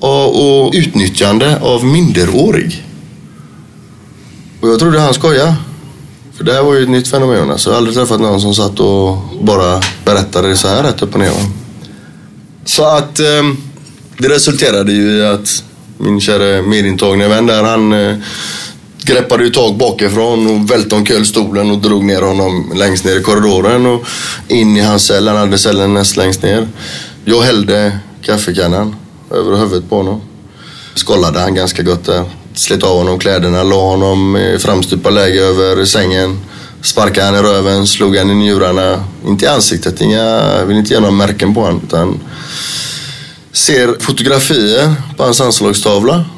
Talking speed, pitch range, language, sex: 160 wpm, 100-135 Hz, English, male